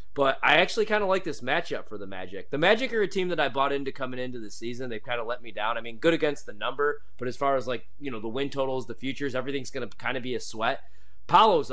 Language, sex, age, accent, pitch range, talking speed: English, male, 20-39, American, 105-135 Hz, 290 wpm